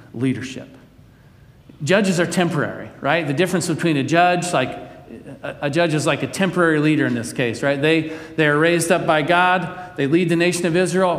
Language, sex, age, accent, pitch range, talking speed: English, male, 40-59, American, 130-165 Hz, 190 wpm